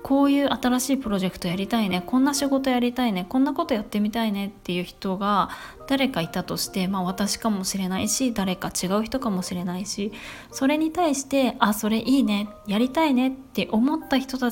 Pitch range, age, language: 190-255 Hz, 20-39, Japanese